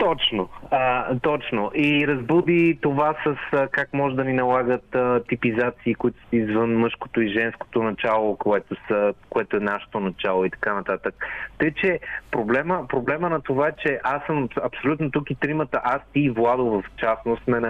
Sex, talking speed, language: male, 180 wpm, Bulgarian